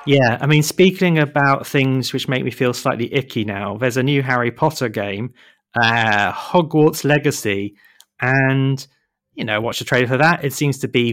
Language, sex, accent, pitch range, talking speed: English, male, British, 110-145 Hz, 185 wpm